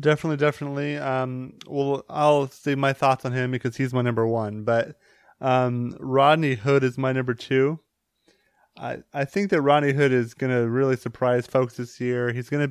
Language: English